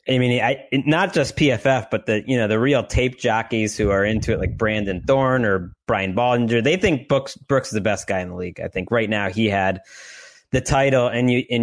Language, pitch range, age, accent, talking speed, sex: English, 105-135 Hz, 20-39, American, 235 wpm, male